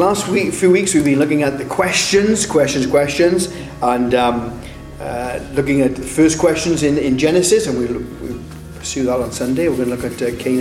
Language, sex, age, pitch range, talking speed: English, male, 40-59, 135-170 Hz, 215 wpm